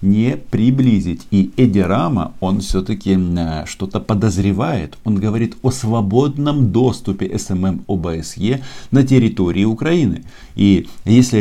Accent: native